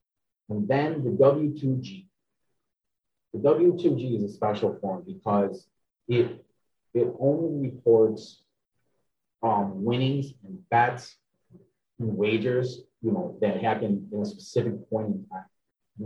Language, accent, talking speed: English, American, 120 wpm